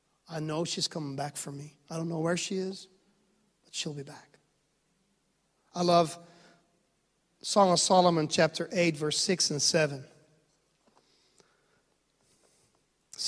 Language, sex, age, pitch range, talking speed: English, male, 40-59, 155-185 Hz, 130 wpm